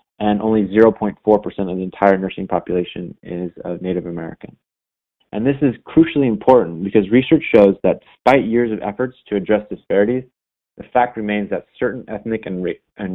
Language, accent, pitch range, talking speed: English, American, 100-115 Hz, 160 wpm